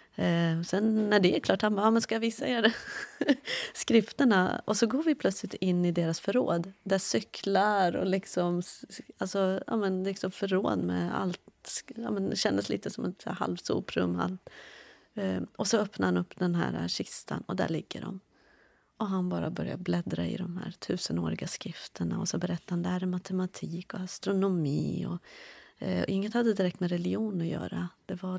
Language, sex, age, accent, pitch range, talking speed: English, female, 30-49, Swedish, 170-195 Hz, 180 wpm